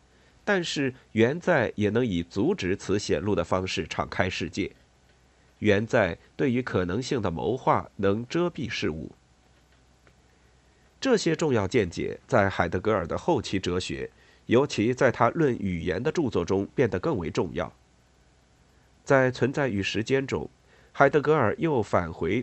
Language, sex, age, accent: Chinese, male, 50-69, native